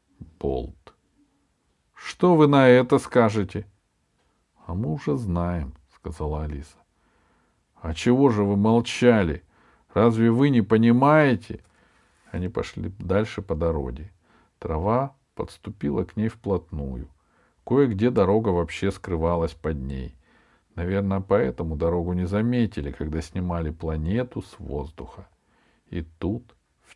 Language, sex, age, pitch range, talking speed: Russian, male, 50-69, 80-110 Hz, 110 wpm